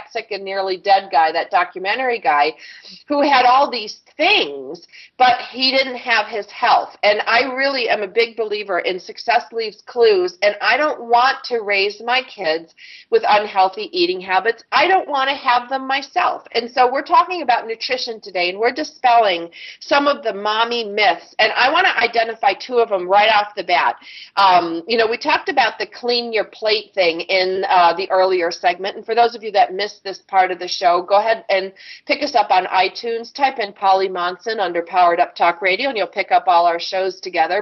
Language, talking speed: English, 205 wpm